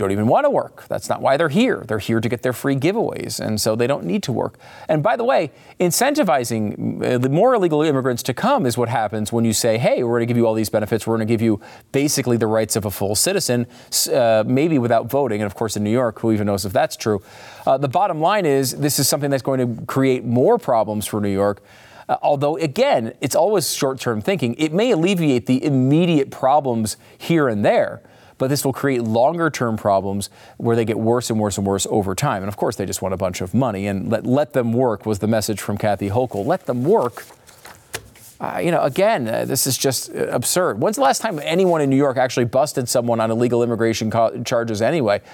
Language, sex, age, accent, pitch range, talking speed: English, male, 40-59, American, 110-150 Hz, 235 wpm